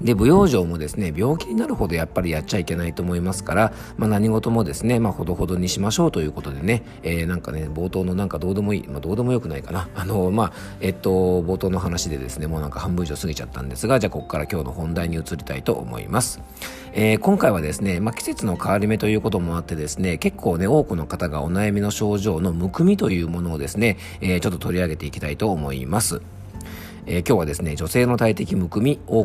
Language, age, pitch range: Japanese, 40-59, 80-105 Hz